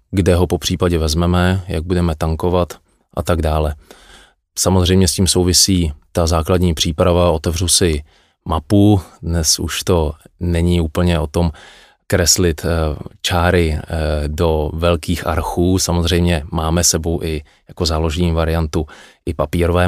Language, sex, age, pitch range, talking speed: Czech, male, 20-39, 80-90 Hz, 125 wpm